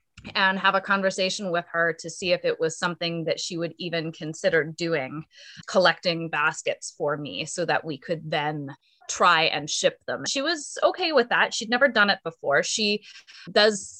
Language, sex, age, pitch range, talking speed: English, female, 20-39, 165-210 Hz, 185 wpm